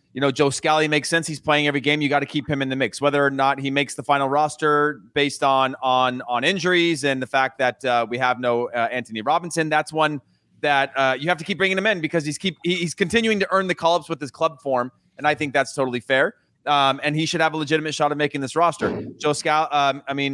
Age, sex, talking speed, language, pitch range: 30-49, male, 265 wpm, English, 130-155 Hz